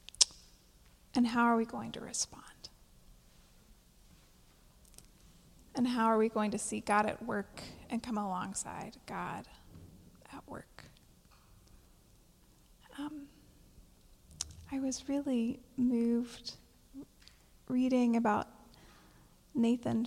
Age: 30-49